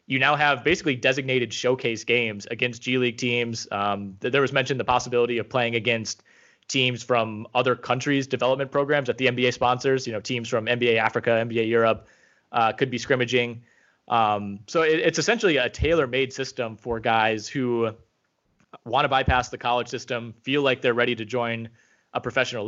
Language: English